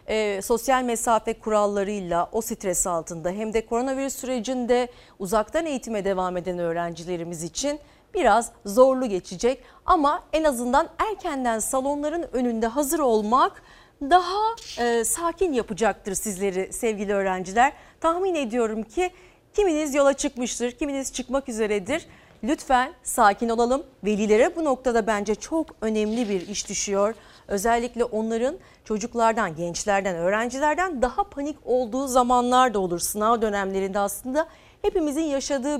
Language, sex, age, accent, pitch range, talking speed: Turkish, female, 40-59, native, 205-285 Hz, 120 wpm